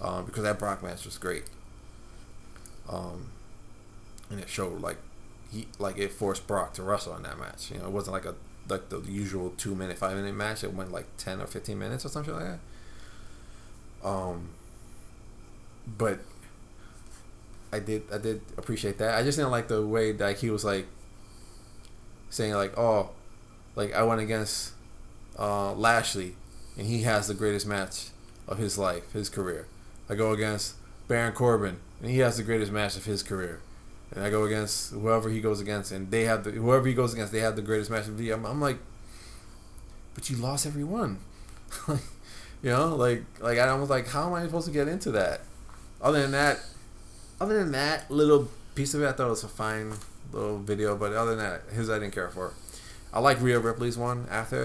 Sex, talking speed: male, 195 wpm